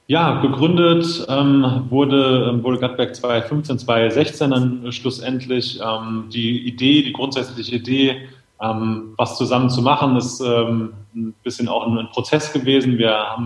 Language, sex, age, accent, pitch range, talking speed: German, male, 20-39, German, 115-125 Hz, 140 wpm